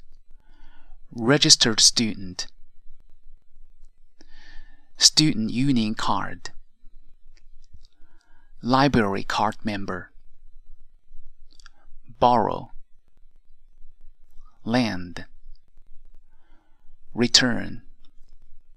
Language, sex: Chinese, male